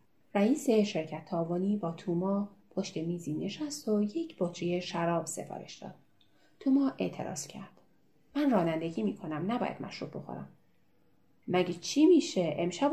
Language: Persian